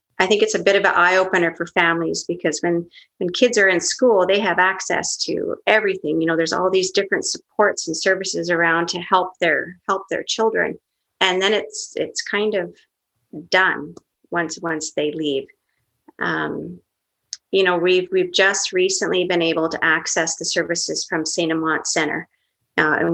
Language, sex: English, female